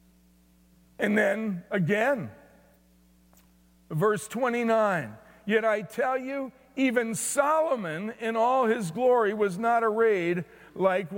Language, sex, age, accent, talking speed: English, male, 50-69, American, 100 wpm